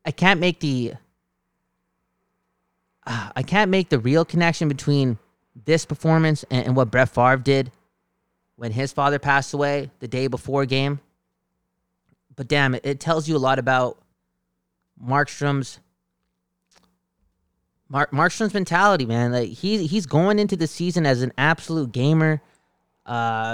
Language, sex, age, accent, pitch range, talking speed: English, male, 20-39, American, 120-165 Hz, 140 wpm